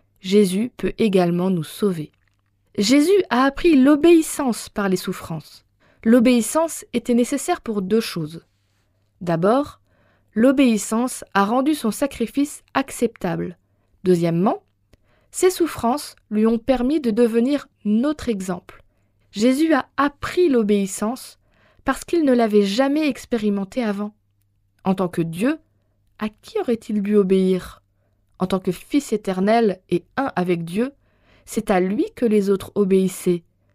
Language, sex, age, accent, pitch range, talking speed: French, female, 20-39, French, 175-250 Hz, 125 wpm